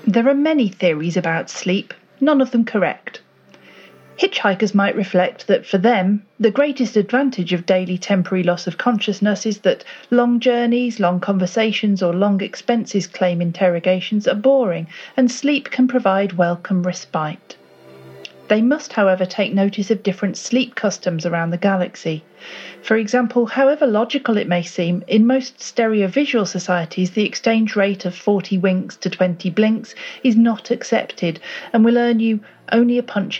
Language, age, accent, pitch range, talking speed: English, 40-59, British, 180-235 Hz, 155 wpm